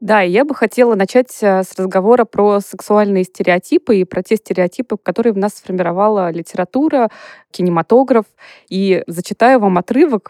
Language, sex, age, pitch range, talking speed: Russian, female, 20-39, 180-230 Hz, 145 wpm